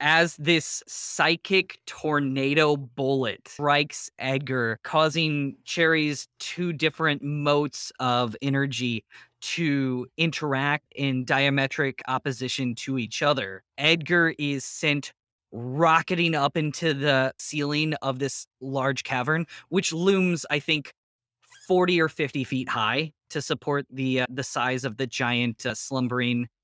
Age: 20-39